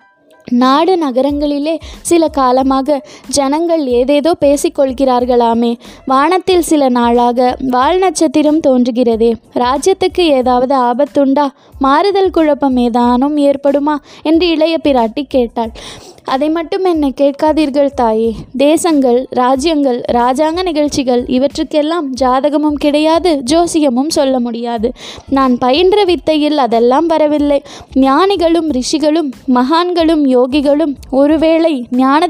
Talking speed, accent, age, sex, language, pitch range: 90 wpm, native, 20-39, female, Tamil, 260-320 Hz